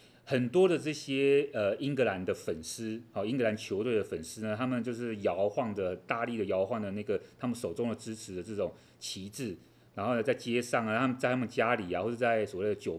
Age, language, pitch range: 30-49, Chinese, 105-140 Hz